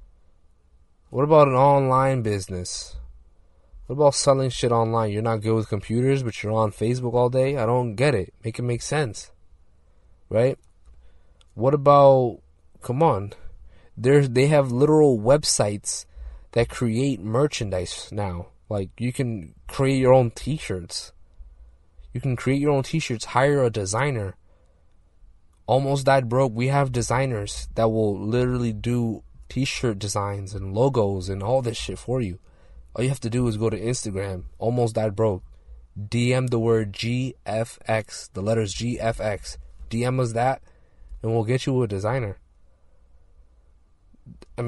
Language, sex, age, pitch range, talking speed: English, male, 20-39, 90-125 Hz, 145 wpm